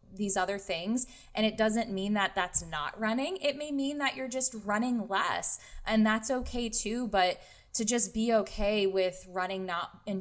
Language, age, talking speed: English, 10-29, 190 wpm